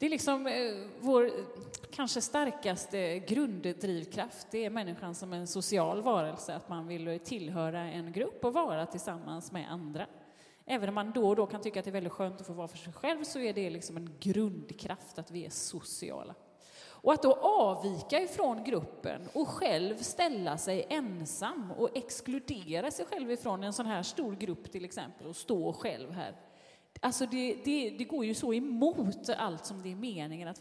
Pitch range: 180-245 Hz